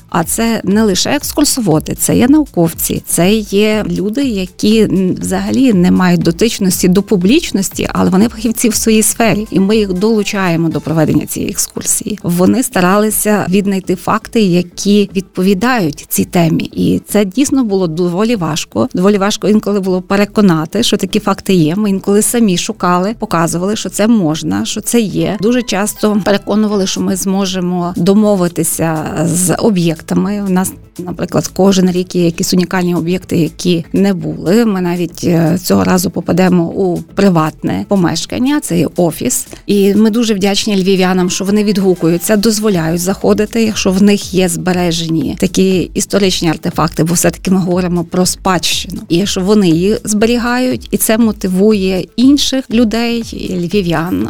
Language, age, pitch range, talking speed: Ukrainian, 30-49, 175-215 Hz, 150 wpm